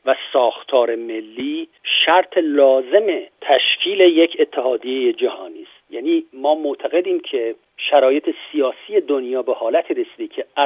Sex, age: male, 50-69